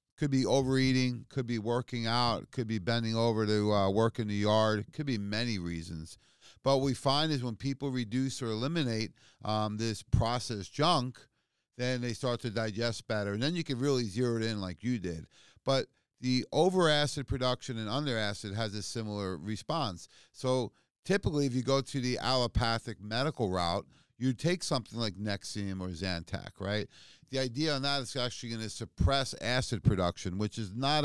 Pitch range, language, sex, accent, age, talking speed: 105-130 Hz, English, male, American, 40-59, 180 wpm